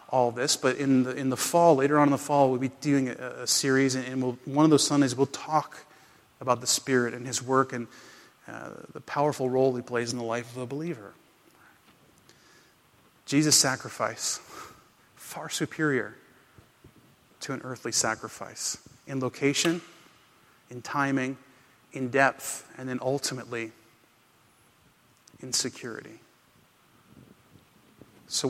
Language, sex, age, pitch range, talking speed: English, male, 30-49, 125-140 Hz, 140 wpm